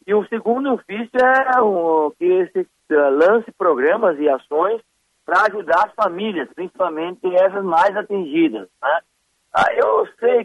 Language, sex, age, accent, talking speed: Portuguese, male, 50-69, Brazilian, 145 wpm